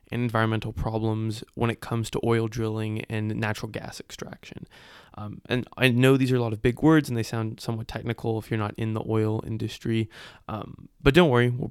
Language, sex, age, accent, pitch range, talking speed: English, male, 20-39, American, 115-130 Hz, 210 wpm